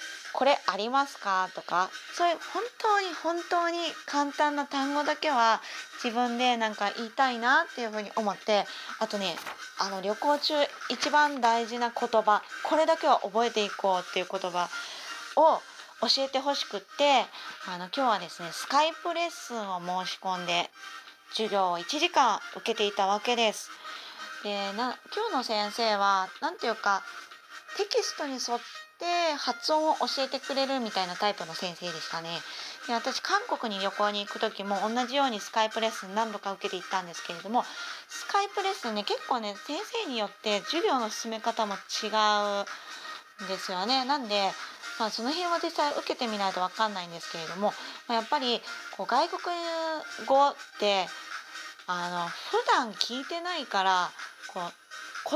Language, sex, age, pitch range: Japanese, female, 20-39, 205-310 Hz